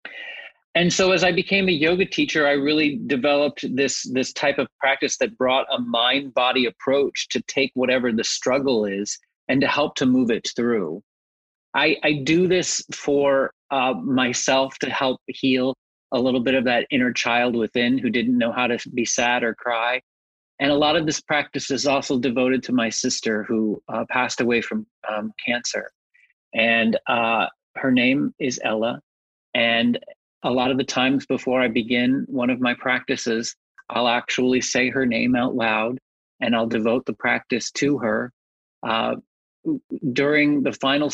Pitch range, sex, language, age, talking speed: 120-145 Hz, male, English, 30-49, 170 wpm